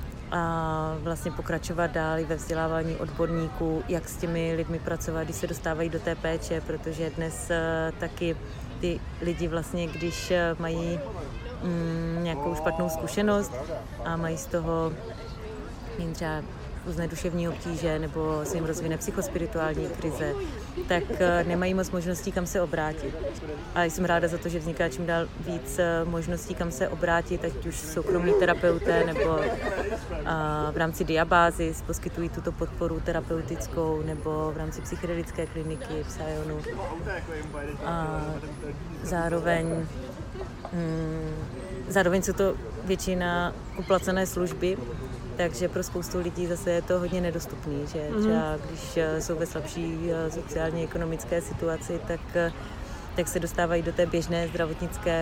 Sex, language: female, Slovak